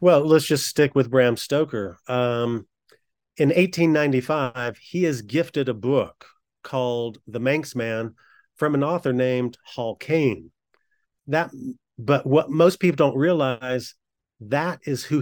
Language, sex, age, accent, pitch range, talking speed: English, male, 40-59, American, 125-155 Hz, 135 wpm